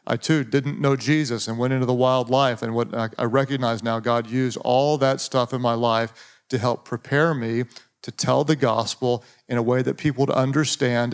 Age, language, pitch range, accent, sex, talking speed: 40-59, English, 120-145 Hz, American, male, 210 wpm